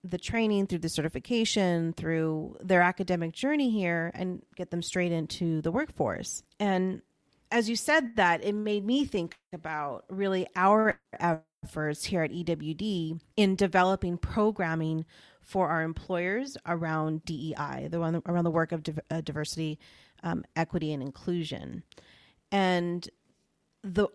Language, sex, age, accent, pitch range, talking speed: English, female, 30-49, American, 165-200 Hz, 135 wpm